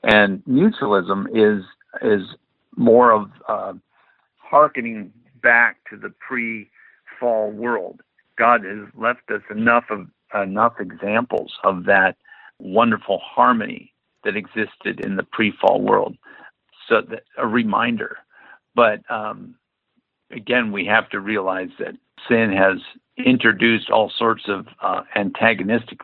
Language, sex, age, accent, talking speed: English, male, 60-79, American, 120 wpm